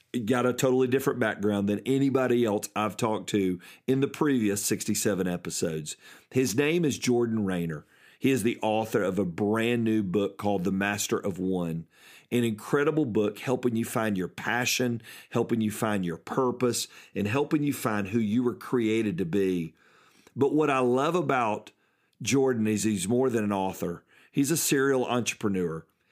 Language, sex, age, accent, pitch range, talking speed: English, male, 50-69, American, 105-125 Hz, 170 wpm